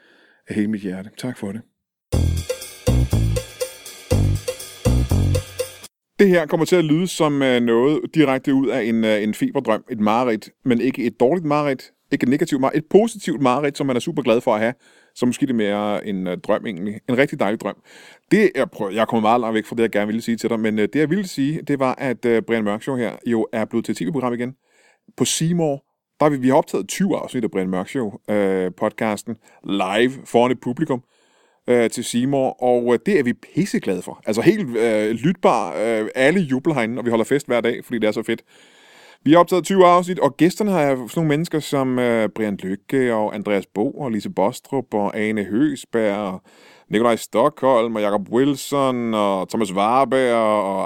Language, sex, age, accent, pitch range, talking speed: Danish, male, 30-49, native, 110-140 Hz, 200 wpm